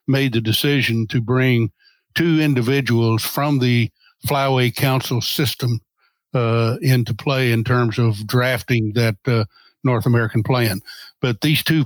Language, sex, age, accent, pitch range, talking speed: English, male, 60-79, American, 115-135 Hz, 135 wpm